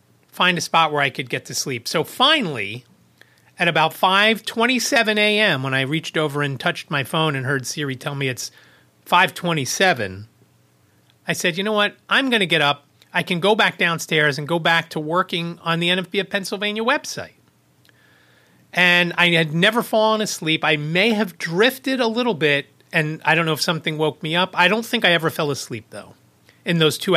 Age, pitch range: 30-49, 135-190 Hz